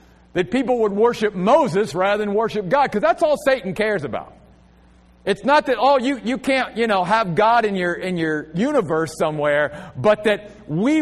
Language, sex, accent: English, male, American